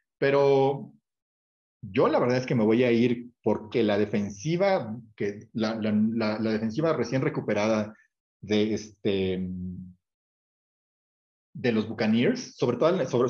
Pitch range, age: 105-135 Hz, 40-59